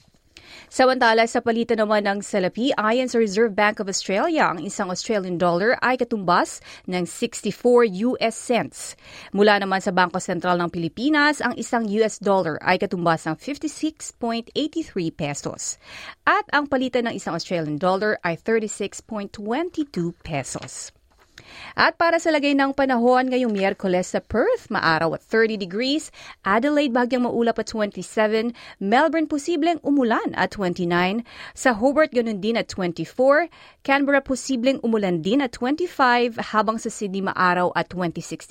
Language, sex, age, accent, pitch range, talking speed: Filipino, female, 30-49, native, 185-260 Hz, 140 wpm